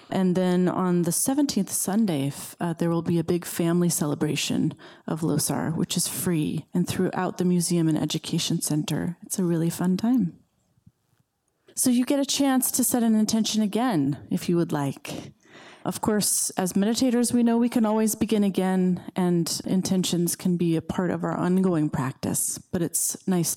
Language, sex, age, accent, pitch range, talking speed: English, female, 30-49, American, 160-205 Hz, 175 wpm